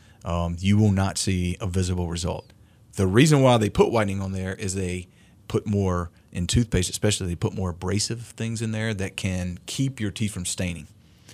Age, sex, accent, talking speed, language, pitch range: 40-59, male, American, 195 wpm, English, 90-105 Hz